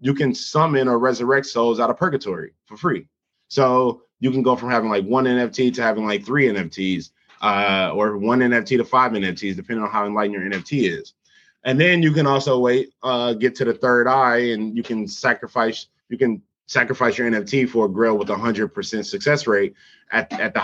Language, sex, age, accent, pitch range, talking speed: English, male, 20-39, American, 110-130 Hz, 210 wpm